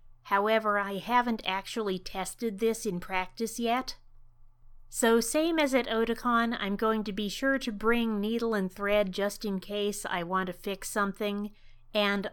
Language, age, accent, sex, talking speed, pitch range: English, 30-49, American, female, 160 wpm, 180-225 Hz